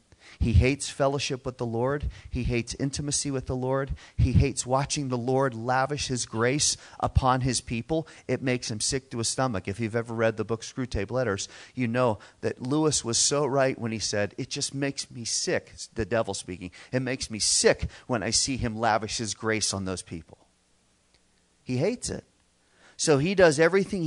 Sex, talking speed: male, 190 wpm